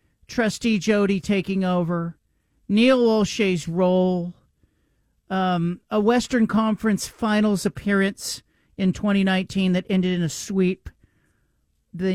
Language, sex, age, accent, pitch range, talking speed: English, male, 40-59, American, 180-230 Hz, 110 wpm